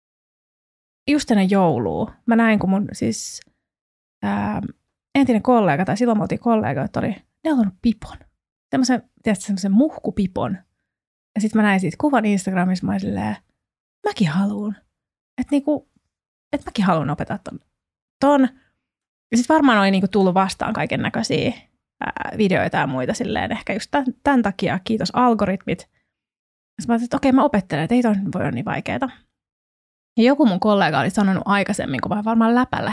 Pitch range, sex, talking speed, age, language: 190-240 Hz, female, 170 wpm, 20-39, Finnish